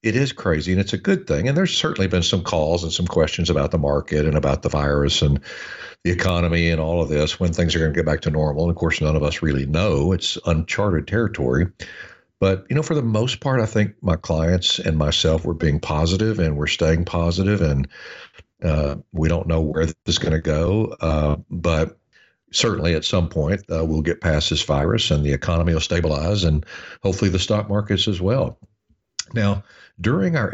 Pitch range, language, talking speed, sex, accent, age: 80-105 Hz, English, 215 wpm, male, American, 60-79